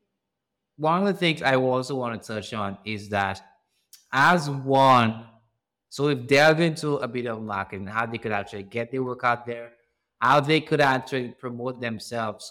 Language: English